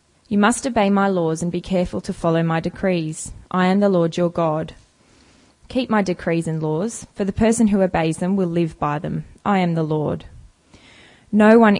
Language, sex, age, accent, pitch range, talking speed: English, female, 20-39, Australian, 170-200 Hz, 200 wpm